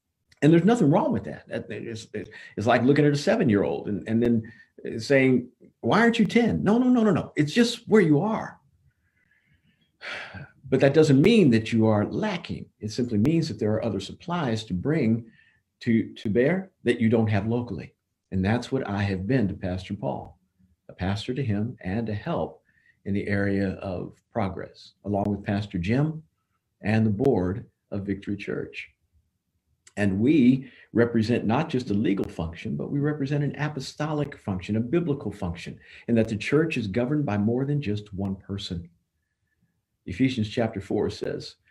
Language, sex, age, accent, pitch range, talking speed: English, male, 50-69, American, 100-135 Hz, 175 wpm